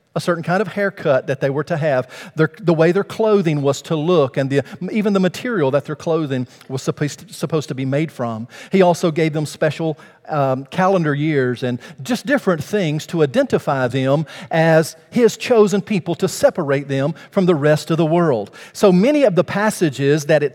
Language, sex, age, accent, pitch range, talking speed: English, male, 50-69, American, 145-185 Hz, 195 wpm